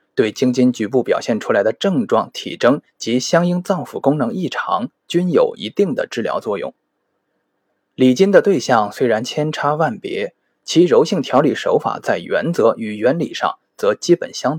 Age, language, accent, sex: 20-39, Chinese, native, male